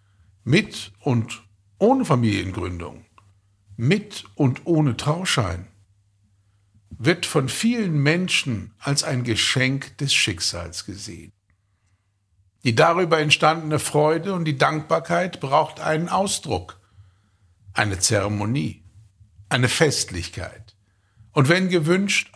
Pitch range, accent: 100-150 Hz, German